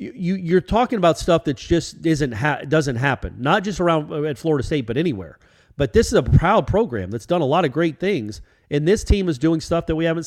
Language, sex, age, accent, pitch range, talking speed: English, male, 40-59, American, 120-195 Hz, 240 wpm